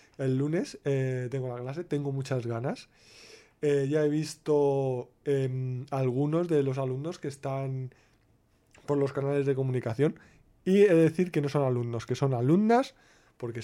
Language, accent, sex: Spanish, Spanish, male